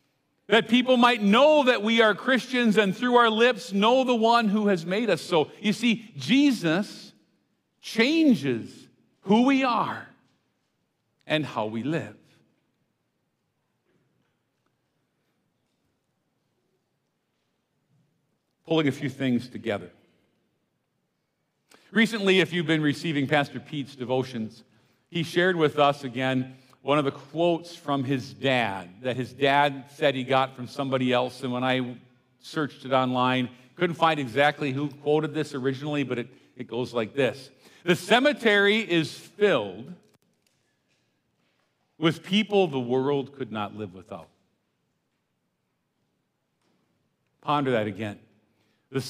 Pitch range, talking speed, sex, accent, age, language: 125-190 Hz, 120 wpm, male, American, 50-69, English